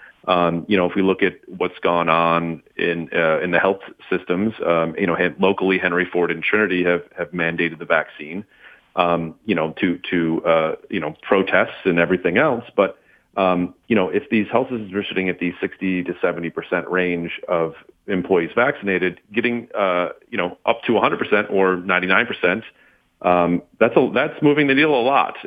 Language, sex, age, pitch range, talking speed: English, male, 40-59, 85-95 Hz, 195 wpm